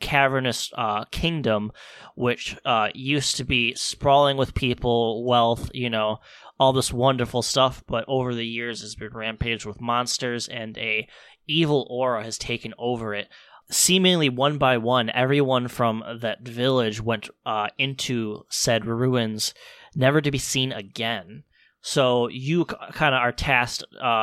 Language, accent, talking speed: English, American, 150 wpm